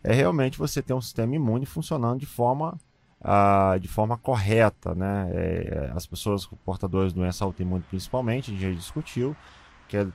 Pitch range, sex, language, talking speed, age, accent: 105-145 Hz, male, Portuguese, 170 wpm, 20-39, Brazilian